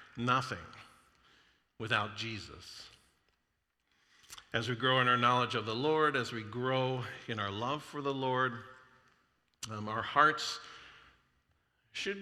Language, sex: English, male